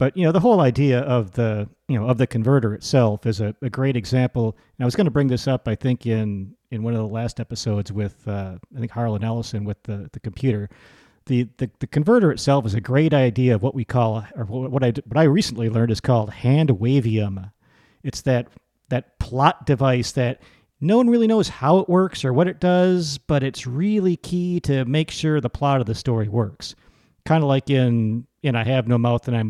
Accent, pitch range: American, 115-140 Hz